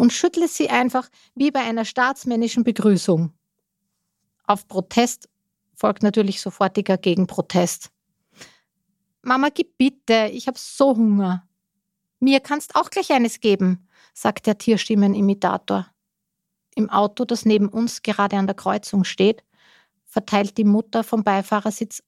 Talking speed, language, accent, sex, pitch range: 125 wpm, German, Austrian, female, 190-230 Hz